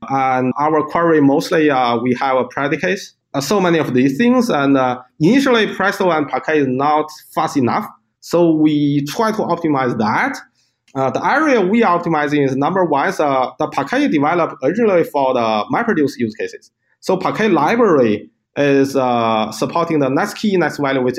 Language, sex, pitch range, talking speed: English, male, 135-195 Hz, 180 wpm